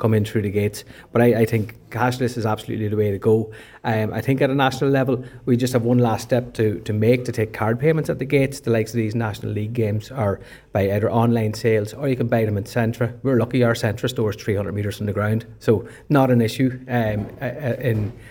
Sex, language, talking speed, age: male, English, 245 wpm, 30-49